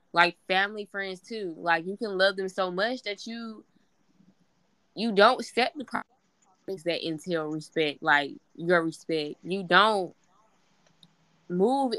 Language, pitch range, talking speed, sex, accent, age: English, 170-200 Hz, 135 wpm, female, American, 10-29